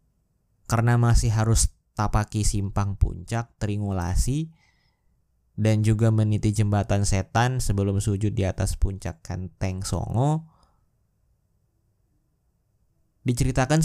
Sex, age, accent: male, 20-39, native